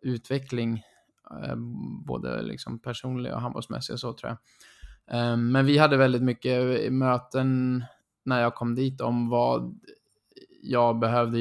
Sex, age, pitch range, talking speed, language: male, 20-39, 120-130 Hz, 105 wpm, Swedish